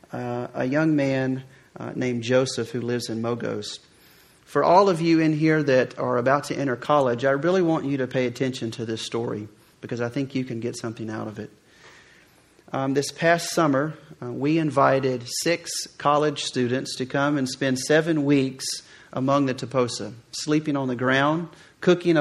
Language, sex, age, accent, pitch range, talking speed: English, male, 40-59, American, 125-145 Hz, 180 wpm